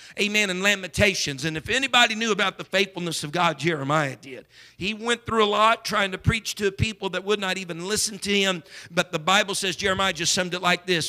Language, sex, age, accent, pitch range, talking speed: English, male, 50-69, American, 155-205 Hz, 220 wpm